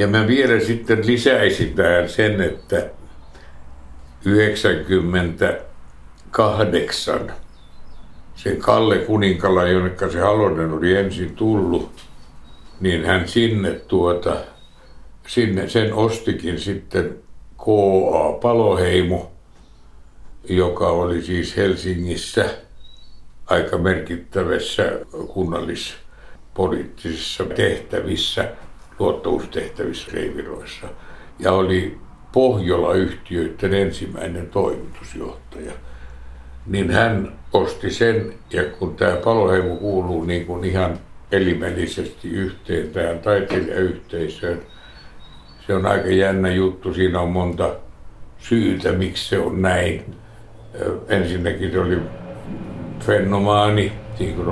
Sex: male